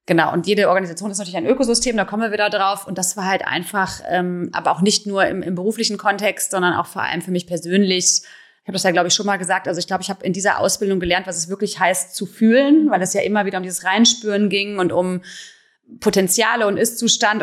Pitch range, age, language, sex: 180-210 Hz, 30-49, German, female